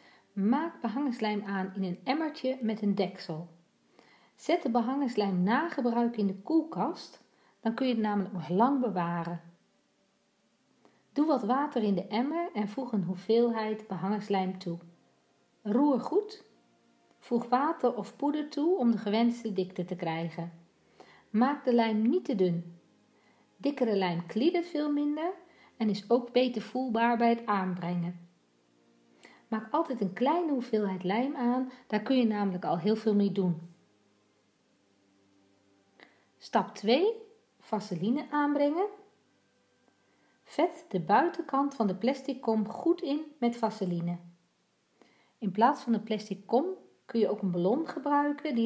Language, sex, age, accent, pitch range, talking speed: Dutch, female, 40-59, Dutch, 185-270 Hz, 140 wpm